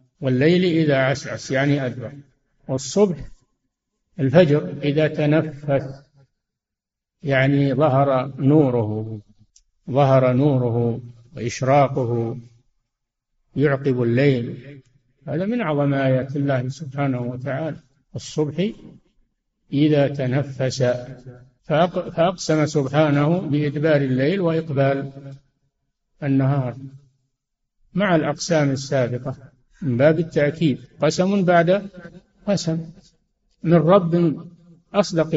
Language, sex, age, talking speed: Arabic, male, 60-79, 75 wpm